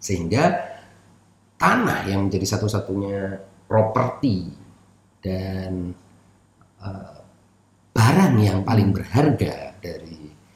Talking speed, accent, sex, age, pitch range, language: 75 wpm, native, male, 40-59, 95-125 Hz, Indonesian